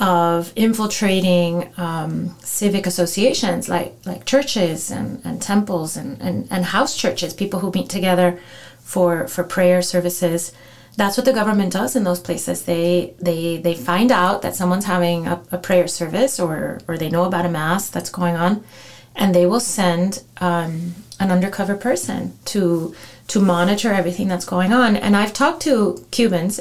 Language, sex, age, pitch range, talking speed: English, female, 30-49, 175-210 Hz, 165 wpm